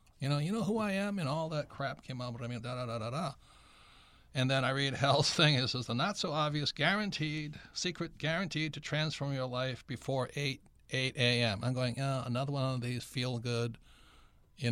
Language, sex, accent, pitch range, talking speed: English, male, American, 115-140 Hz, 210 wpm